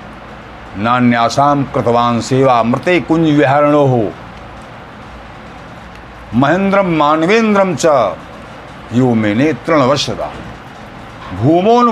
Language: Hindi